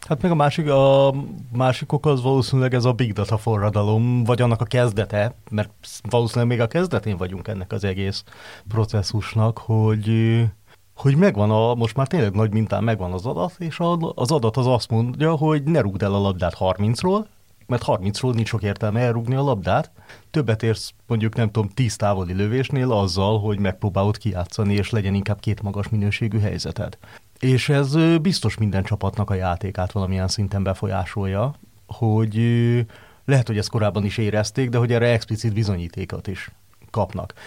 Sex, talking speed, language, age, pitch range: male, 165 wpm, Hungarian, 30-49, 100-125 Hz